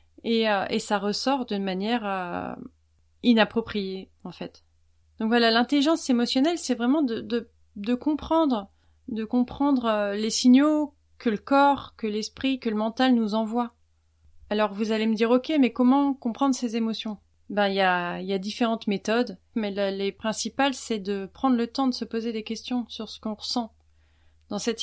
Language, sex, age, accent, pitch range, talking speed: French, female, 30-49, French, 195-240 Hz, 180 wpm